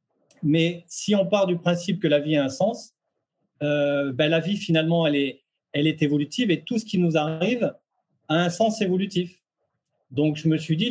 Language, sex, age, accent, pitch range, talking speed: French, male, 40-59, French, 145-180 Hz, 205 wpm